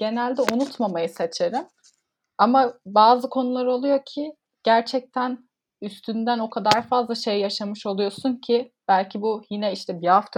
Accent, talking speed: native, 135 wpm